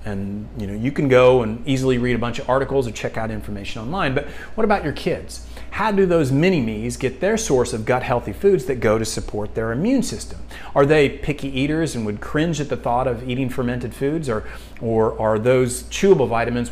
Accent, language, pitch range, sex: American, English, 110-145 Hz, male